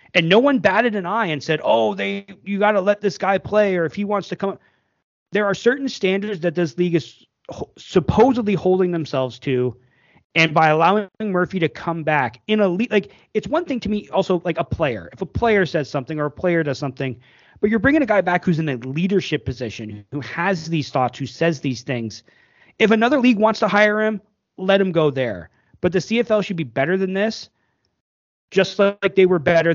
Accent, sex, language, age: American, male, English, 30-49